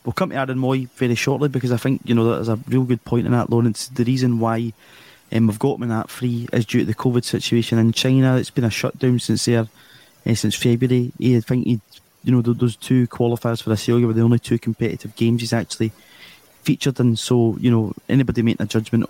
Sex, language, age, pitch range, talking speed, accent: male, English, 20-39, 115-125 Hz, 240 wpm, British